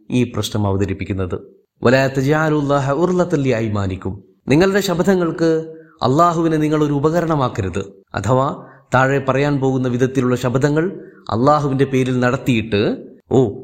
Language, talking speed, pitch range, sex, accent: Malayalam, 90 wpm, 120-160 Hz, male, native